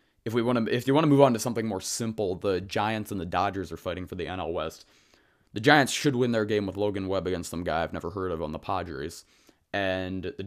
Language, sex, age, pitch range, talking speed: English, male, 20-39, 90-110 Hz, 265 wpm